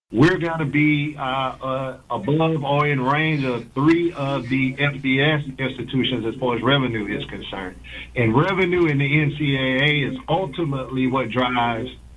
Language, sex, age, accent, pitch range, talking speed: English, male, 50-69, American, 125-145 Hz, 155 wpm